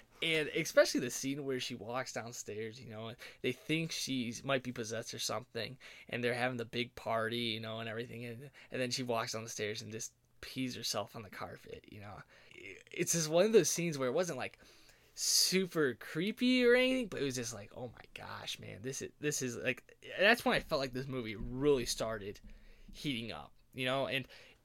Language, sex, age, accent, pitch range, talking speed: English, male, 10-29, American, 115-155 Hz, 215 wpm